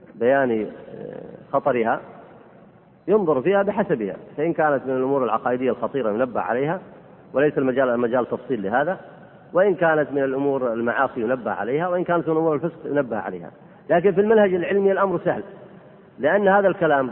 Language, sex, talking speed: Arabic, male, 145 wpm